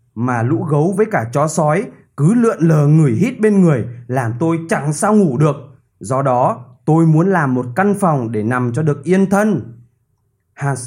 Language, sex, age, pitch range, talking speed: Vietnamese, male, 20-39, 125-185 Hz, 195 wpm